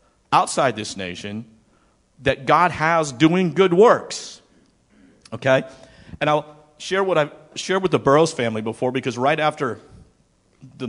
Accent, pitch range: American, 115-155 Hz